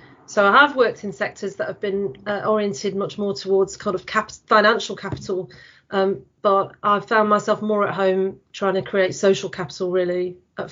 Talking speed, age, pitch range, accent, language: 185 wpm, 40-59, 190-215 Hz, British, English